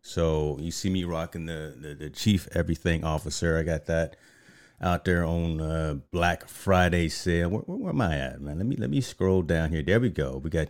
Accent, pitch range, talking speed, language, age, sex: American, 75-90 Hz, 225 wpm, English, 30-49, male